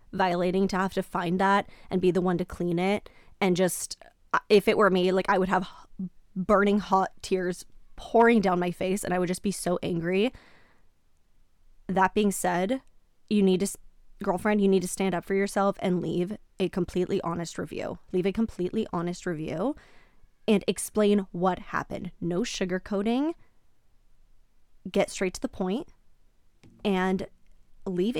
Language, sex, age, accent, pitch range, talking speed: English, female, 20-39, American, 185-215 Hz, 160 wpm